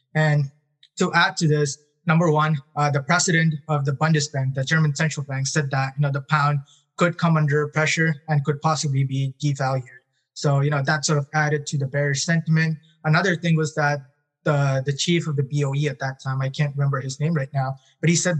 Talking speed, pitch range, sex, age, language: 215 wpm, 140-155 Hz, male, 20-39, English